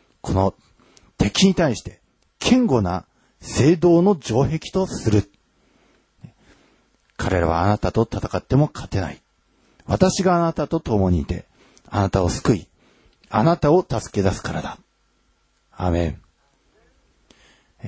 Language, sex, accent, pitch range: Japanese, male, native, 90-130 Hz